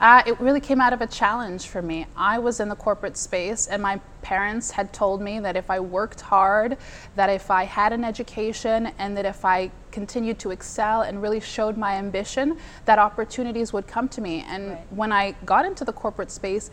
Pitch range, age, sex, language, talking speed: 195-235 Hz, 20-39, female, English, 210 wpm